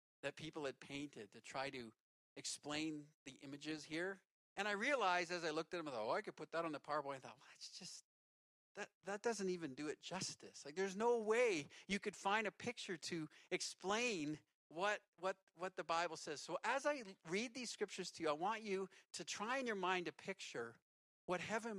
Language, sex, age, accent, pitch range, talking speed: English, male, 50-69, American, 155-200 Hz, 215 wpm